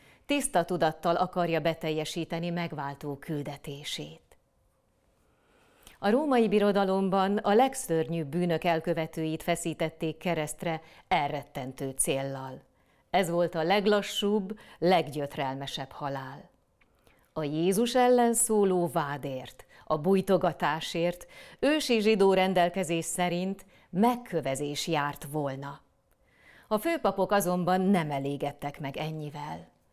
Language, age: Hungarian, 30-49